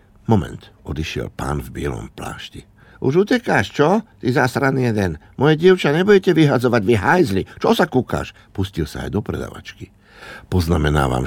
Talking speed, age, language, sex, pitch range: 145 wpm, 60-79, Slovak, male, 75-105 Hz